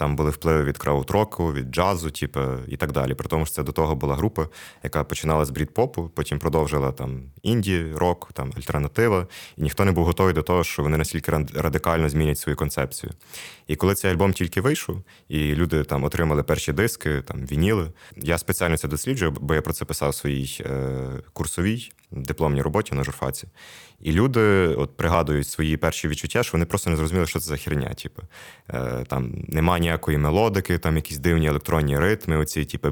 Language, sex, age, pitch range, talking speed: Ukrainian, male, 20-39, 75-90 Hz, 190 wpm